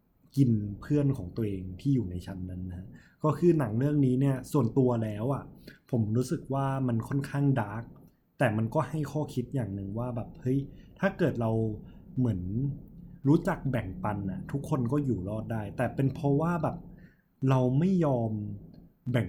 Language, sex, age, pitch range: Thai, male, 20-39, 110-140 Hz